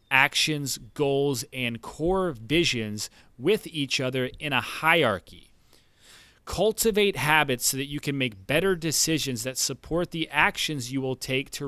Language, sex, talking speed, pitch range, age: English, male, 145 wpm, 100-135 Hz, 30-49